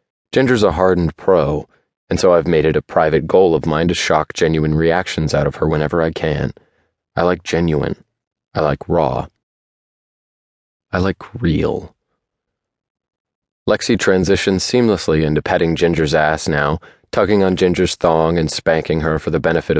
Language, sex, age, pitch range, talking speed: English, male, 30-49, 75-90 Hz, 155 wpm